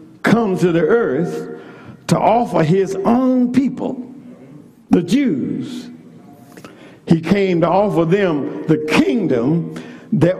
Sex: male